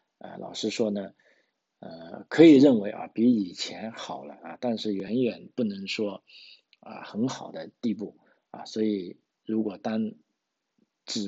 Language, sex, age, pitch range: Chinese, male, 50-69, 100-115 Hz